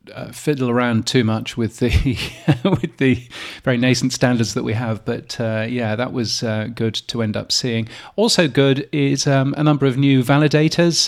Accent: British